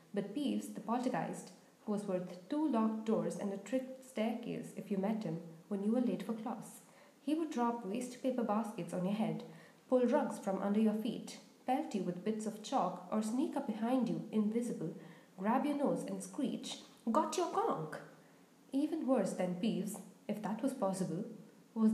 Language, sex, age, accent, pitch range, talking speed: English, female, 20-39, Indian, 200-260 Hz, 185 wpm